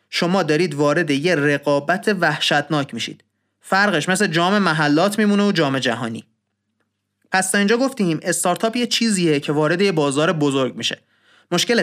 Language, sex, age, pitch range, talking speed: Persian, male, 30-49, 150-200 Hz, 135 wpm